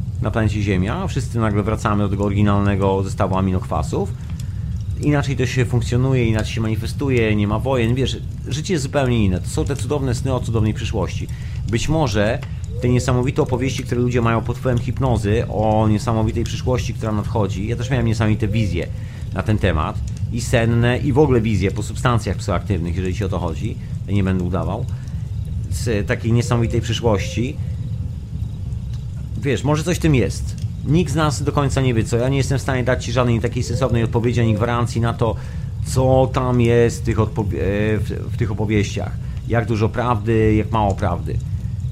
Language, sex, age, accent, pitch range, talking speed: Polish, male, 30-49, native, 105-125 Hz, 175 wpm